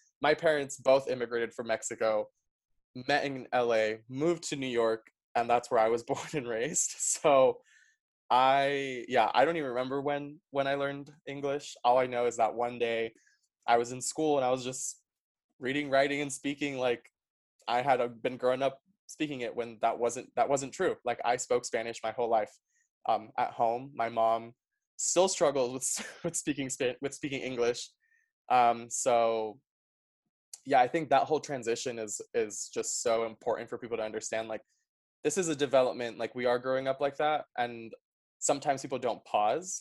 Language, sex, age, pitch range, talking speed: English, male, 20-39, 115-145 Hz, 180 wpm